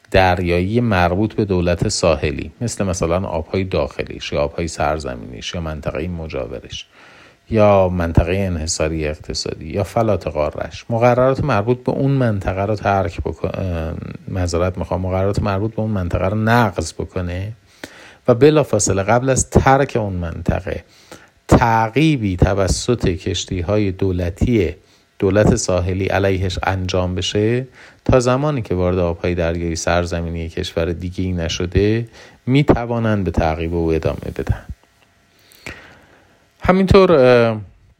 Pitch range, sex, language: 85-110 Hz, male, Persian